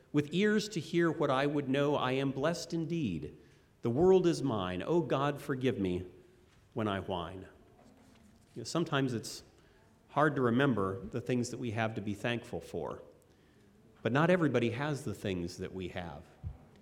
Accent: American